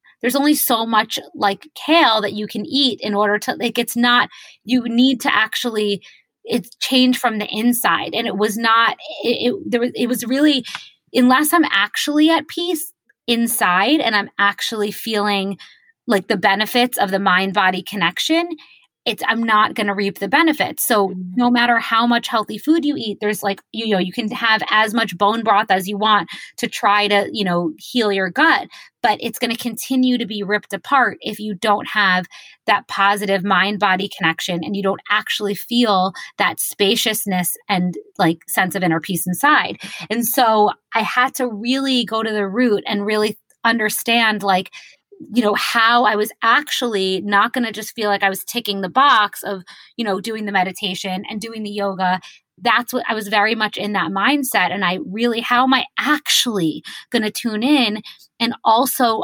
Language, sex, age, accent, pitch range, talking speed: English, female, 20-39, American, 200-245 Hz, 190 wpm